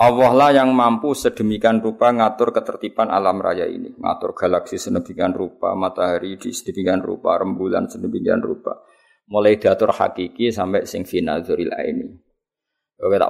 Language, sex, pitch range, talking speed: Malay, male, 100-130 Hz, 140 wpm